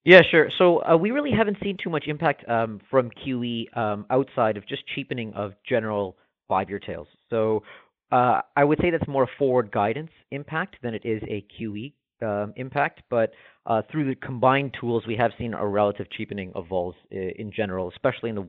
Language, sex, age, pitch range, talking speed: English, male, 40-59, 105-135 Hz, 190 wpm